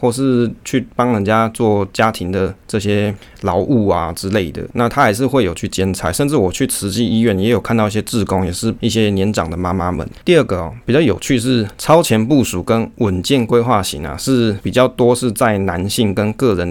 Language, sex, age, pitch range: Chinese, male, 20-39, 95-115 Hz